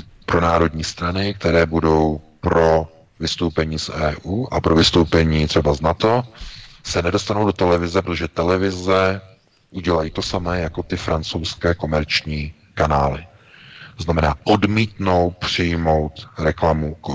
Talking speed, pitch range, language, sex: 120 wpm, 85-95 Hz, Czech, male